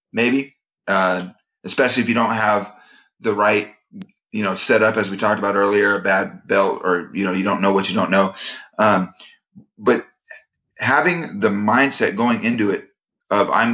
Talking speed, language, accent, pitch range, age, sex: 180 wpm, English, American, 100-110 Hz, 30-49, male